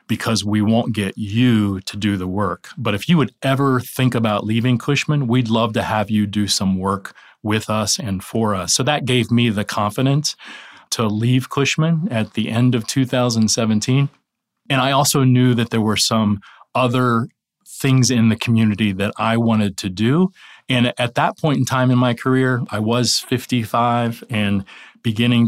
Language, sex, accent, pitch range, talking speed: English, male, American, 105-125 Hz, 180 wpm